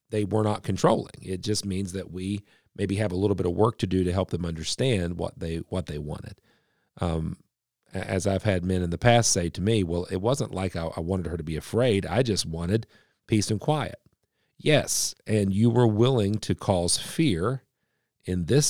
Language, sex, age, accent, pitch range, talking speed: English, male, 40-59, American, 90-115 Hz, 205 wpm